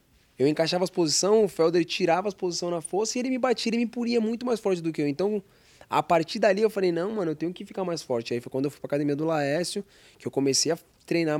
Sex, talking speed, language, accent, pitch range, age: male, 275 wpm, Portuguese, Brazilian, 135-175 Hz, 20-39